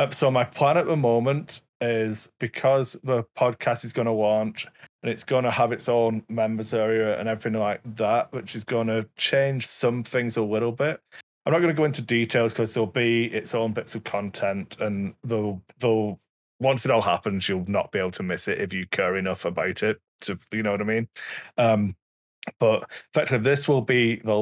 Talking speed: 210 wpm